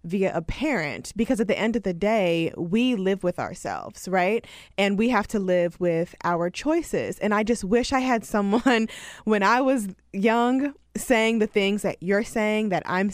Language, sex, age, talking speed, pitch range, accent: English, female, 20-39, 190 wpm, 175-220 Hz, American